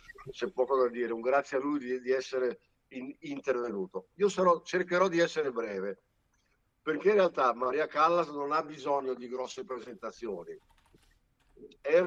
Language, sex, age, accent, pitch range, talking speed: Italian, male, 60-79, native, 135-185 Hz, 160 wpm